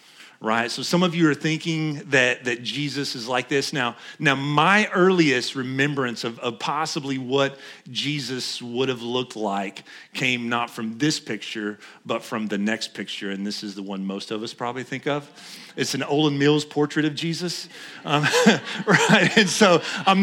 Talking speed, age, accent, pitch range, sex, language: 180 wpm, 40-59, American, 120-170 Hz, male, English